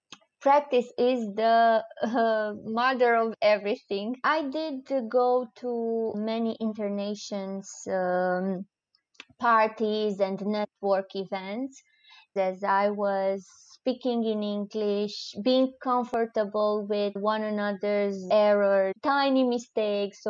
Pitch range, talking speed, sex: 210-270 Hz, 95 wpm, female